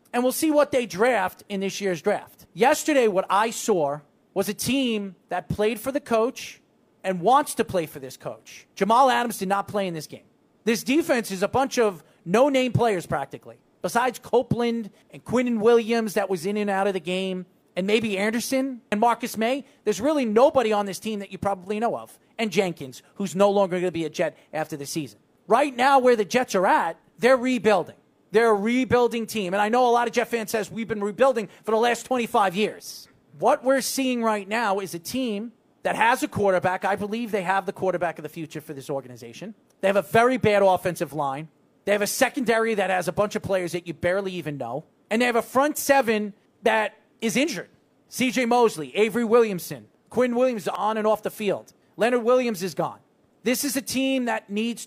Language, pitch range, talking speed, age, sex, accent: English, 190-240 Hz, 215 wpm, 40-59, male, American